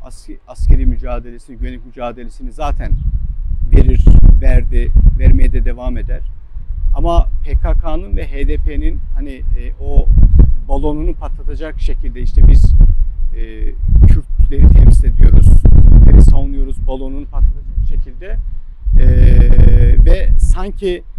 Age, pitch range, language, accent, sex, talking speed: 50-69, 75-105 Hz, Turkish, native, male, 100 wpm